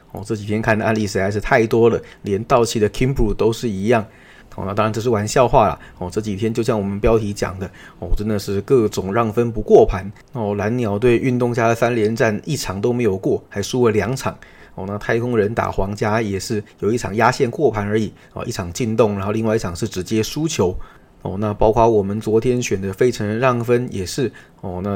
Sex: male